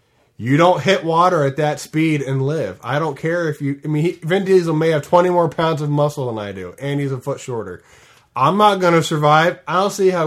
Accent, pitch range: American, 125-160 Hz